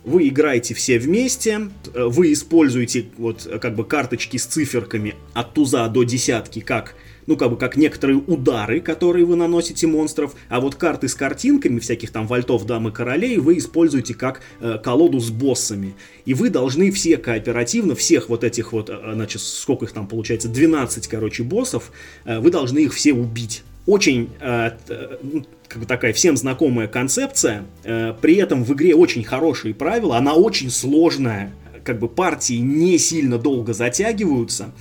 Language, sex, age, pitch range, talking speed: Russian, male, 20-39, 115-165 Hz, 160 wpm